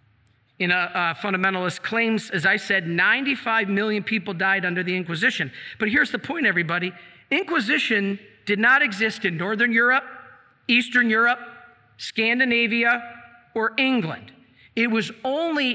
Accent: American